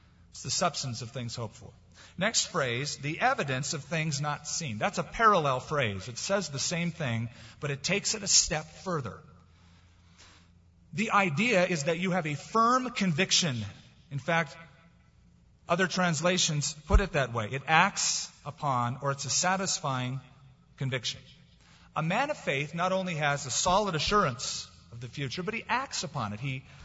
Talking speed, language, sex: 170 wpm, English, male